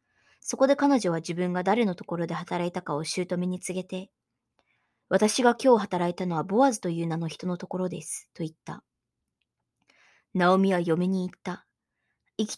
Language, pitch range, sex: Japanese, 175-210 Hz, male